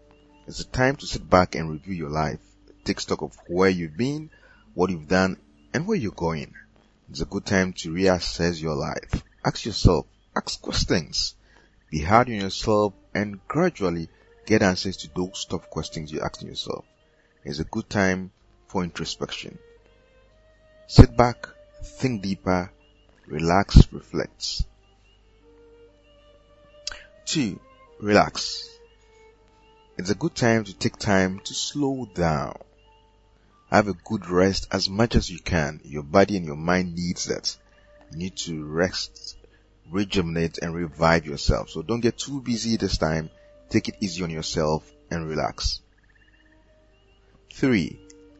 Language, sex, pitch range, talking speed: English, male, 85-115 Hz, 140 wpm